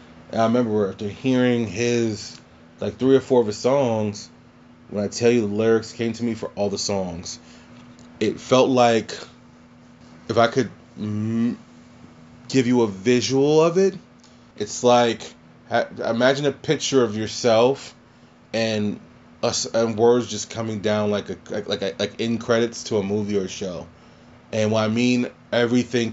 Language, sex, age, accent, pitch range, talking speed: English, male, 20-39, American, 100-120 Hz, 165 wpm